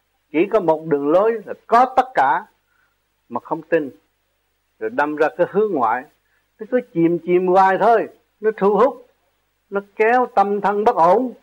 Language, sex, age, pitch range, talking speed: Vietnamese, male, 60-79, 145-225 Hz, 175 wpm